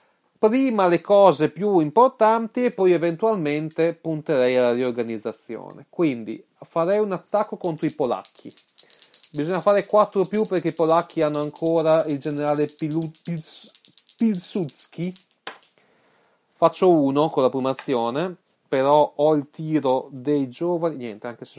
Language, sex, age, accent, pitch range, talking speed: Italian, male, 30-49, native, 125-185 Hz, 130 wpm